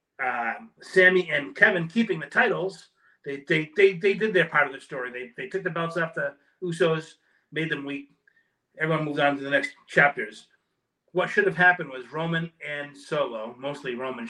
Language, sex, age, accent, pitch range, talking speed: English, male, 30-49, American, 125-170 Hz, 195 wpm